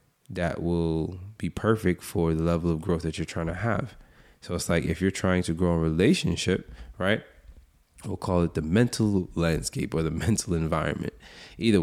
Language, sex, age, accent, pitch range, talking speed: English, male, 20-39, American, 85-105 Hz, 185 wpm